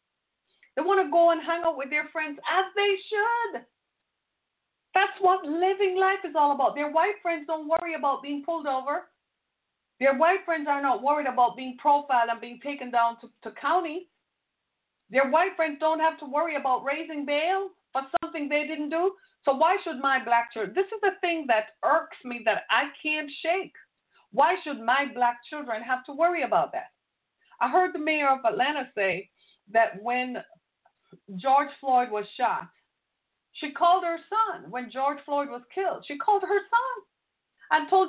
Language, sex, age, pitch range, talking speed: English, female, 50-69, 250-335 Hz, 180 wpm